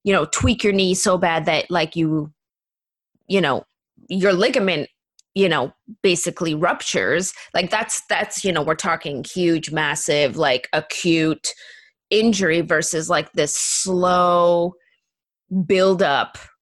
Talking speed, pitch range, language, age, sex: 125 wpm, 160-200 Hz, English, 20-39, female